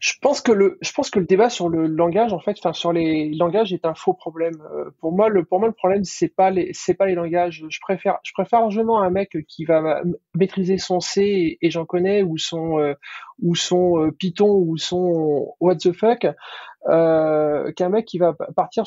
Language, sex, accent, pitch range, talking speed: French, male, French, 160-195 Hz, 225 wpm